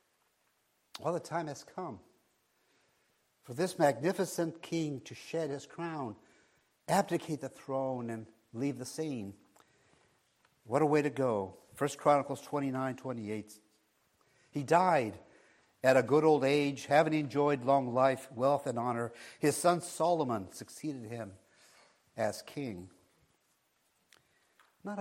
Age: 60-79